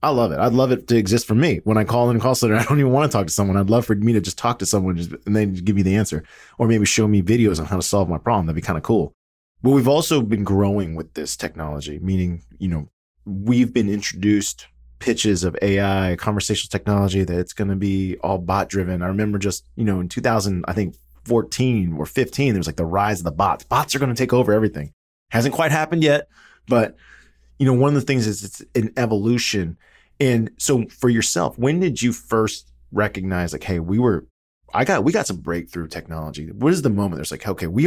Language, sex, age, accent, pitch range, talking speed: English, male, 20-39, American, 90-115 Hz, 245 wpm